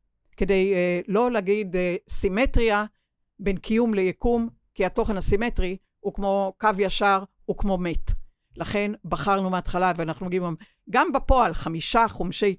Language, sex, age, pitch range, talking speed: Hebrew, female, 60-79, 170-210 Hz, 140 wpm